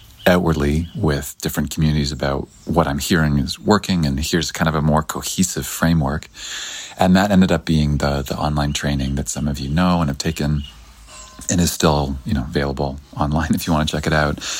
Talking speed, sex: 200 wpm, male